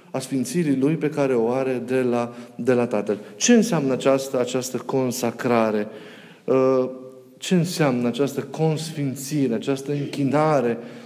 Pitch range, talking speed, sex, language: 125-160 Hz, 120 wpm, male, Romanian